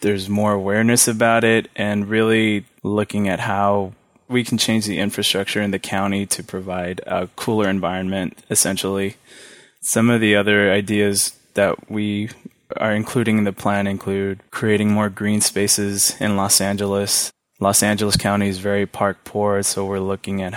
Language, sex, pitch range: English, male, 95-110 Hz